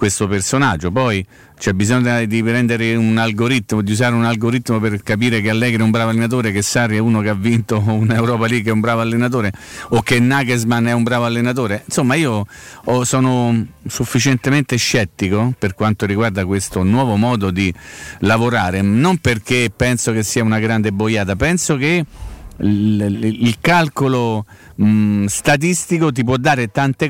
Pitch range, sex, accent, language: 100-130 Hz, male, native, Italian